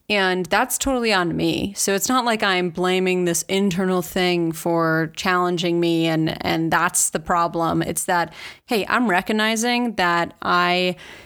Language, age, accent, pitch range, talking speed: English, 20-39, American, 175-200 Hz, 155 wpm